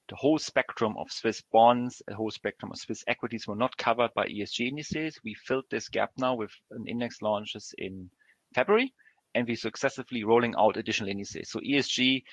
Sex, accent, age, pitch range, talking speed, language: male, German, 40-59, 105-130 Hz, 185 wpm, English